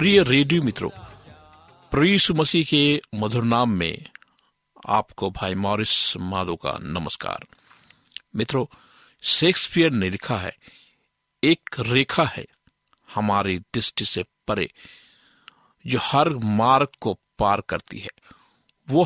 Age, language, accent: 50-69, Hindi, native